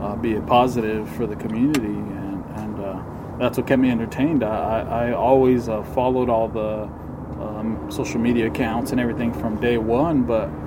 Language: English